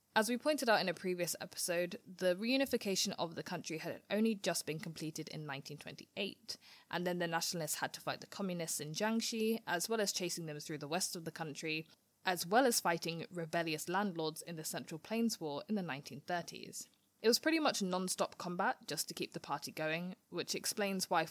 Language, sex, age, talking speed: English, female, 20-39, 200 wpm